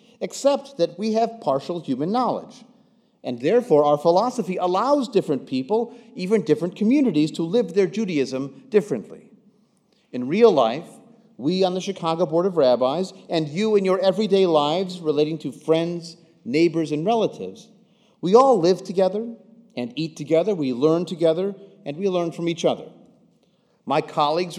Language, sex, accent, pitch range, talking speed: English, male, American, 150-225 Hz, 150 wpm